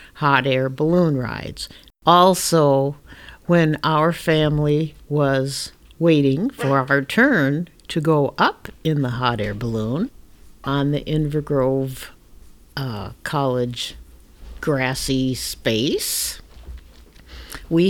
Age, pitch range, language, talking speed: 60-79, 135-170 Hz, English, 95 wpm